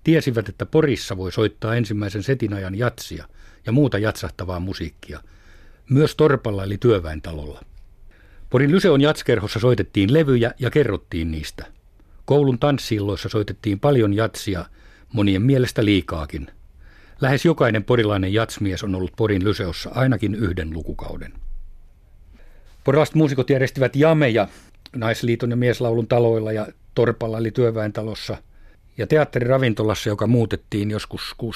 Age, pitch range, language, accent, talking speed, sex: 50-69, 95-125 Hz, Finnish, native, 115 wpm, male